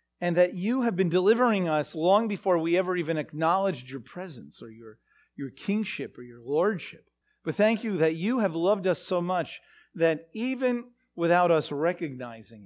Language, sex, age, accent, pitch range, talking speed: English, male, 50-69, American, 125-180 Hz, 175 wpm